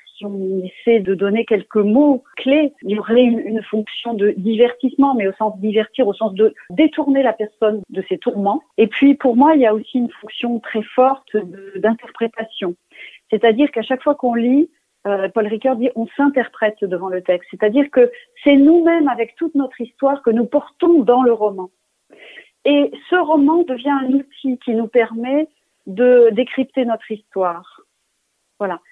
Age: 40-59